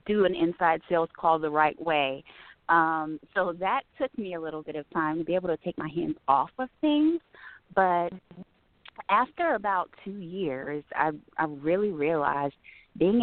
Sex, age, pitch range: female, 30-49, 140-165 Hz